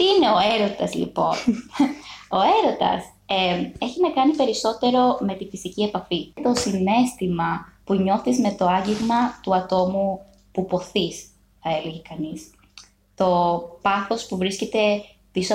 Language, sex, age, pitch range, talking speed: Greek, female, 20-39, 175-235 Hz, 135 wpm